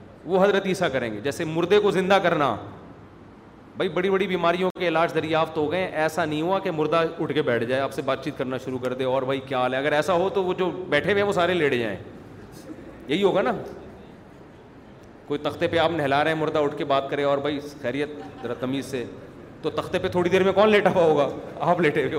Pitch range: 140-170 Hz